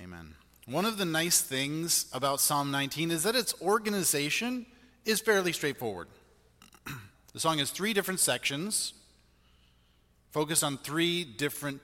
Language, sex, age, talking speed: English, male, 30-49, 130 wpm